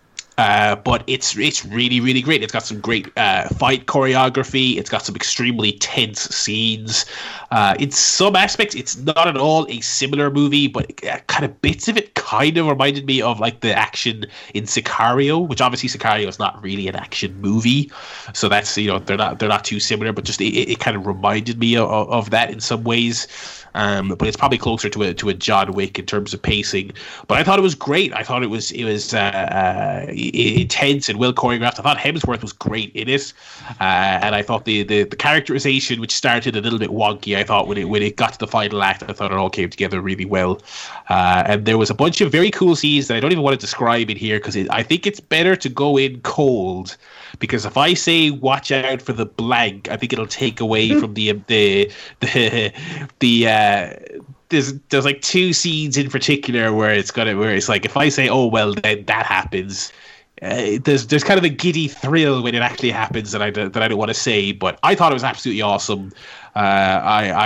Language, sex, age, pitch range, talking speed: English, male, 20-39, 105-140 Hz, 225 wpm